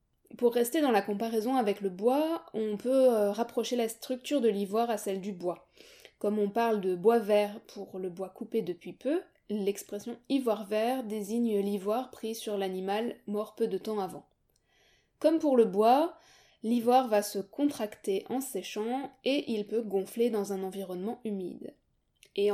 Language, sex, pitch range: French, female, 200-245 Hz